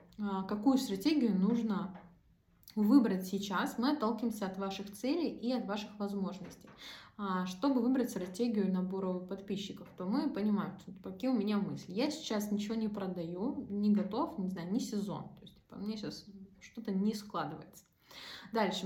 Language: Russian